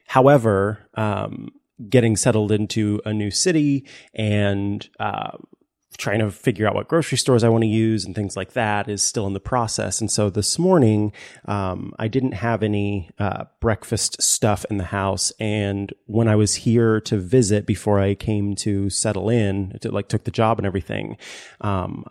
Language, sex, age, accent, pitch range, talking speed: English, male, 30-49, American, 100-115 Hz, 175 wpm